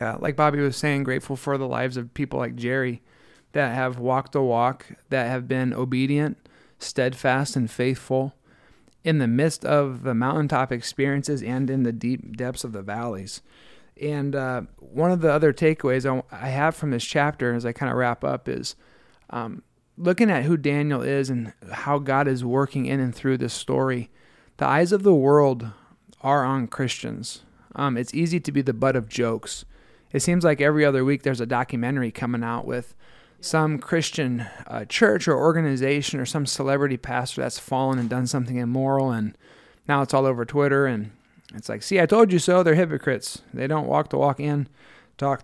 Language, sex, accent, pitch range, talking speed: English, male, American, 125-145 Hz, 190 wpm